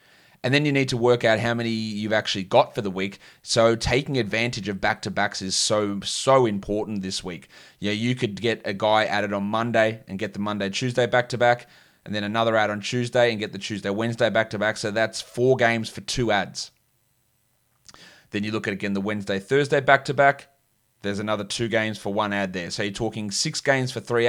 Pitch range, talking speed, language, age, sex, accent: 105-125 Hz, 200 wpm, English, 30-49, male, Australian